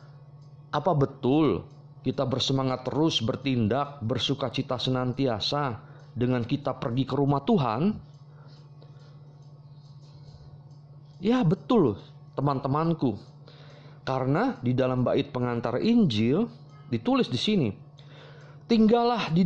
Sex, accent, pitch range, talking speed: male, native, 130-165 Hz, 90 wpm